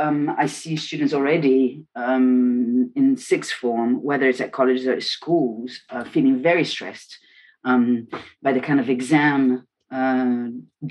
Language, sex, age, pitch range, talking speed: English, female, 40-59, 125-150 Hz, 145 wpm